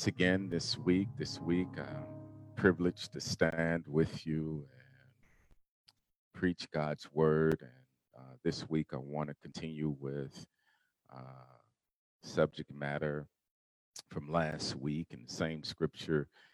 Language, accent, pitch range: English, American, 70-80 Hz